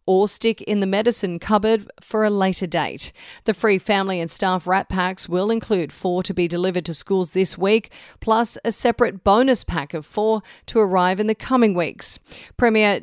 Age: 40-59